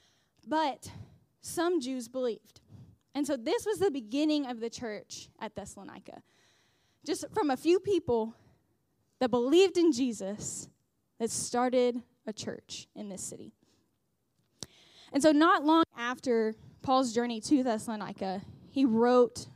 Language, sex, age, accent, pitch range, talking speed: English, female, 10-29, American, 230-295 Hz, 130 wpm